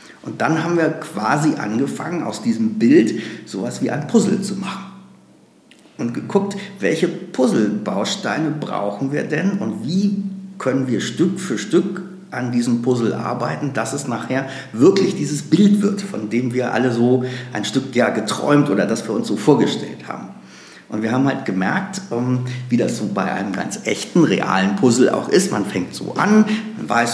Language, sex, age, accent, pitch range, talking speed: German, male, 50-69, German, 120-185 Hz, 170 wpm